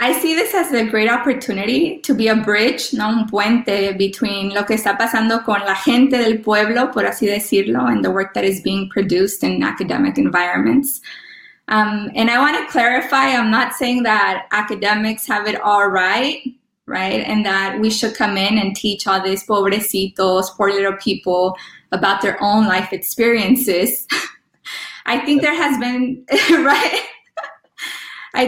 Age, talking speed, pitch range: 20-39, 165 wpm, 200-255 Hz